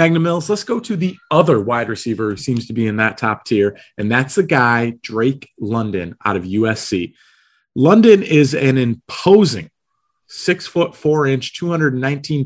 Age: 30-49